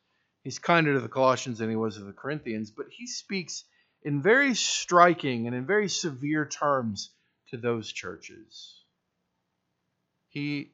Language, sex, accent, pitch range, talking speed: English, male, American, 105-145 Hz, 145 wpm